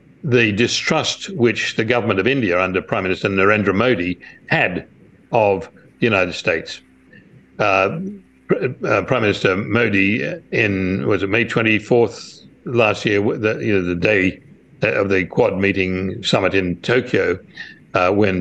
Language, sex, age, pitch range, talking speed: English, male, 60-79, 90-105 Hz, 135 wpm